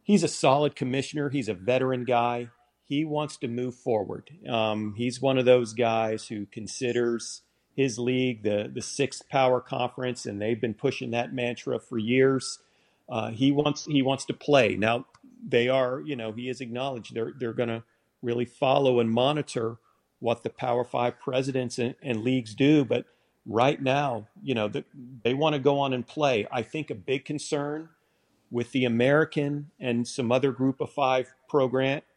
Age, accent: 40-59, American